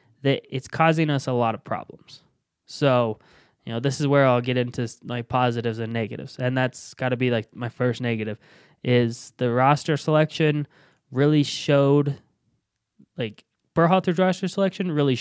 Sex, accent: male, American